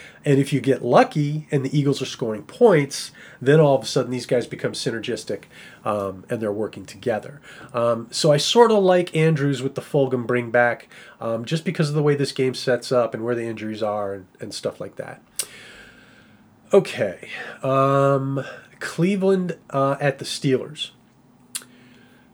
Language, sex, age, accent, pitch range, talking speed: English, male, 30-49, American, 125-165 Hz, 170 wpm